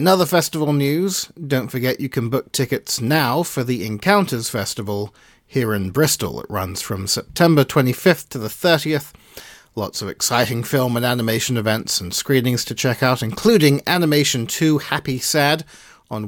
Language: English